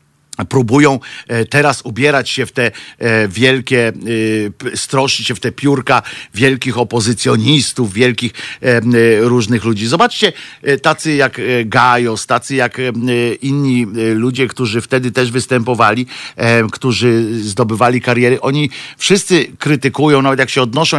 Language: Polish